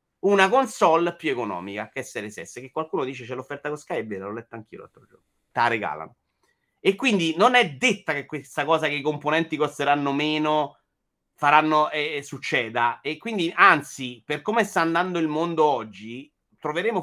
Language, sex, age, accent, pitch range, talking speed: Italian, male, 30-49, native, 115-165 Hz, 175 wpm